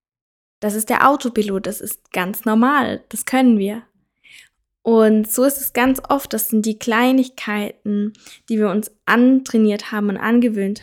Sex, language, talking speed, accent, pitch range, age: female, German, 155 wpm, German, 200-245 Hz, 20-39